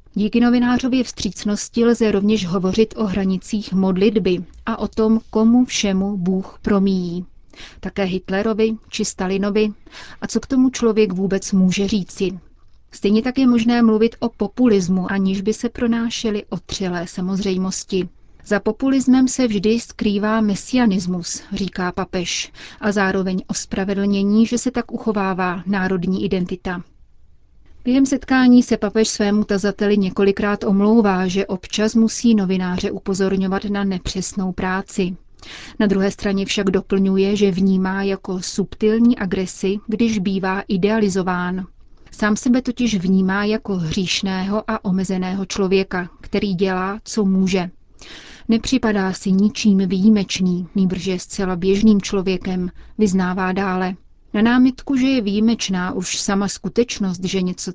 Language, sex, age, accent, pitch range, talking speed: Czech, female, 30-49, native, 190-220 Hz, 125 wpm